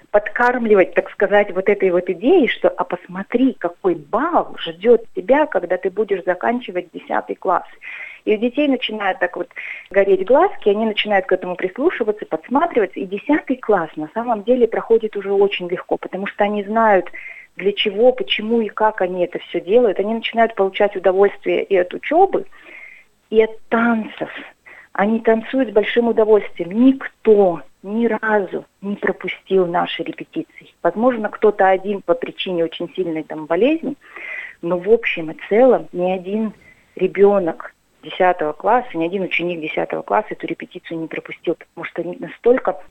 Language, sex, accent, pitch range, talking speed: Russian, female, native, 180-230 Hz, 155 wpm